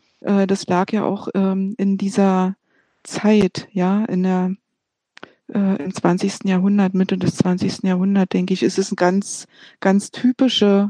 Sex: female